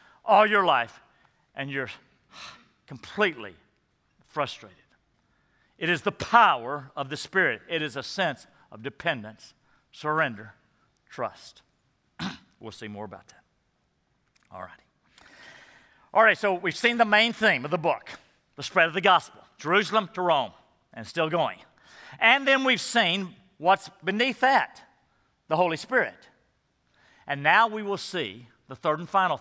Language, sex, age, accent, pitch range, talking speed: English, male, 50-69, American, 135-200 Hz, 145 wpm